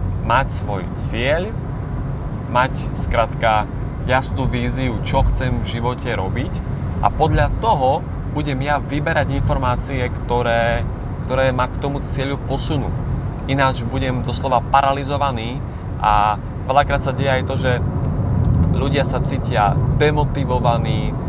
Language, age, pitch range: Slovak, 20-39, 120-140 Hz